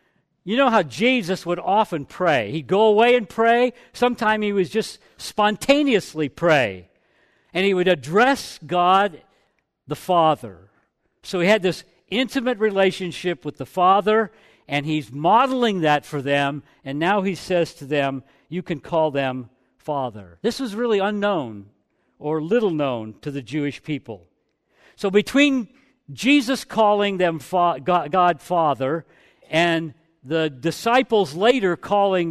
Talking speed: 135 wpm